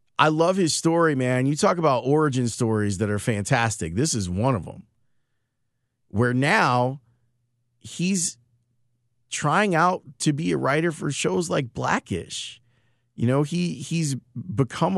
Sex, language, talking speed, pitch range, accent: male, English, 145 wpm, 115-150 Hz, American